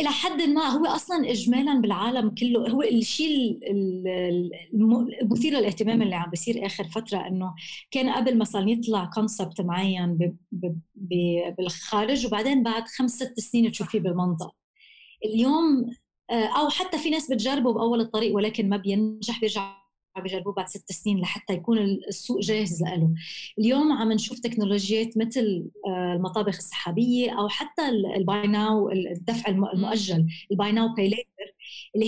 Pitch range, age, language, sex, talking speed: 195-240 Hz, 20-39, Arabic, female, 130 wpm